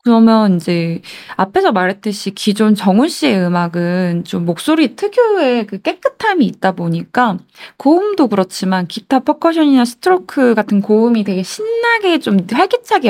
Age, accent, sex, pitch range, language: 20-39, native, female, 185-260 Hz, Korean